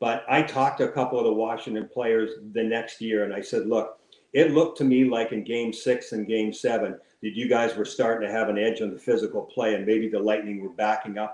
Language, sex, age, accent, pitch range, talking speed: English, male, 50-69, American, 110-140 Hz, 255 wpm